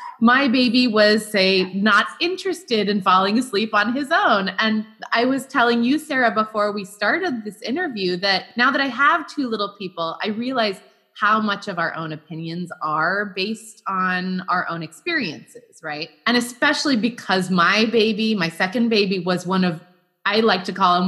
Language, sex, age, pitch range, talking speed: English, female, 20-39, 200-300 Hz, 175 wpm